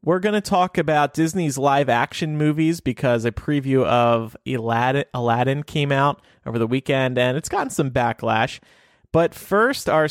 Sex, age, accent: male, 30-49, American